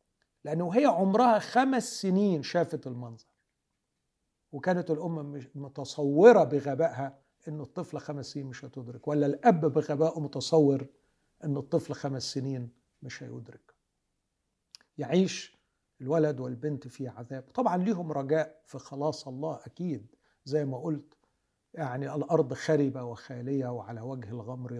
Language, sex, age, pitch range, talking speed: Arabic, male, 50-69, 125-155 Hz, 120 wpm